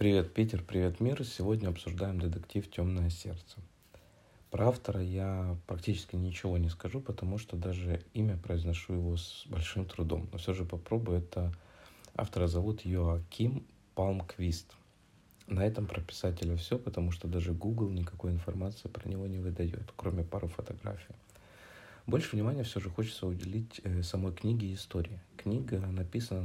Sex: male